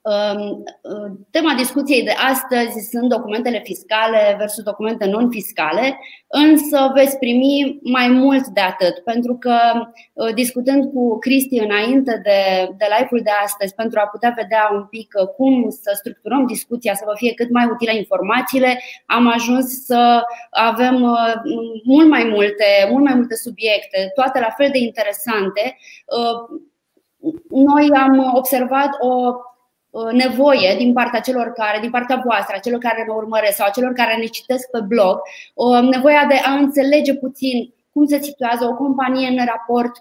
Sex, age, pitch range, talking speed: female, 20-39, 225-265 Hz, 145 wpm